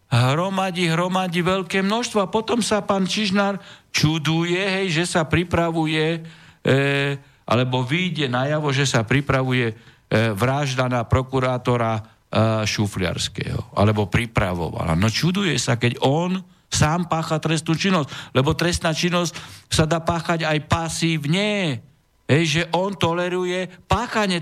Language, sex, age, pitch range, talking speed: Slovak, male, 60-79, 140-190 Hz, 125 wpm